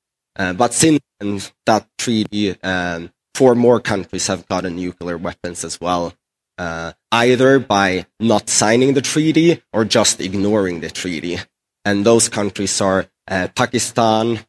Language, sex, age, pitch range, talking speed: English, male, 20-39, 95-125 Hz, 135 wpm